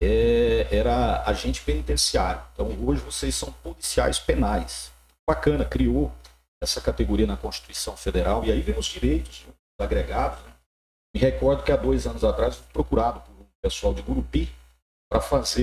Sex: male